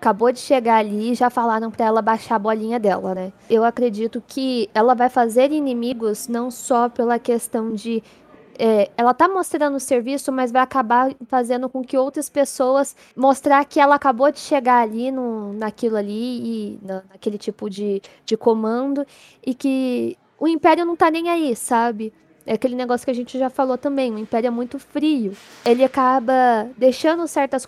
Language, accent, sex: Portuguese, Brazilian, female